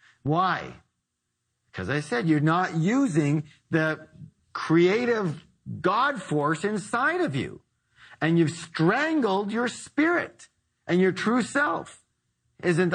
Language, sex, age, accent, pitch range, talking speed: English, male, 50-69, American, 135-200 Hz, 110 wpm